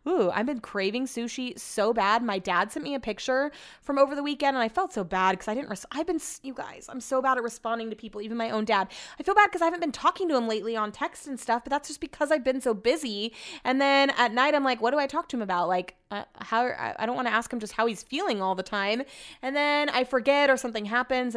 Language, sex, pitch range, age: English, female, 200-265 Hz, 20-39